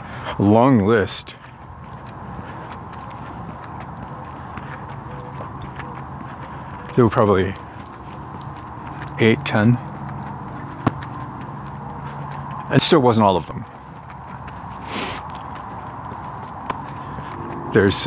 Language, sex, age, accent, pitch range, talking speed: English, male, 50-69, American, 110-140 Hz, 45 wpm